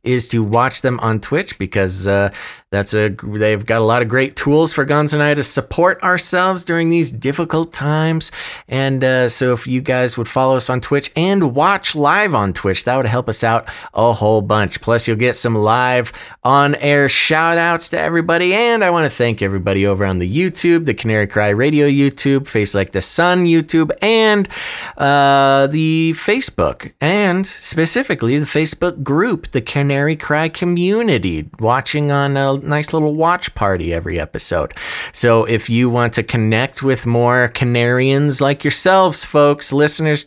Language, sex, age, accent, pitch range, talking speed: English, male, 30-49, American, 120-160 Hz, 175 wpm